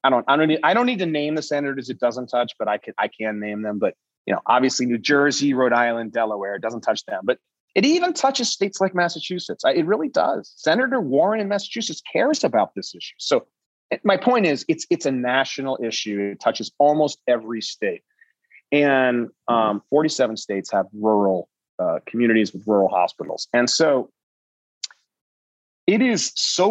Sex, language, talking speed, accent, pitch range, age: male, English, 185 wpm, American, 110-160 Hz, 30-49